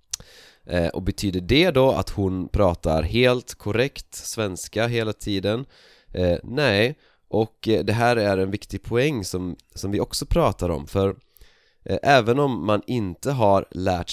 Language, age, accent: Swedish, 20-39, native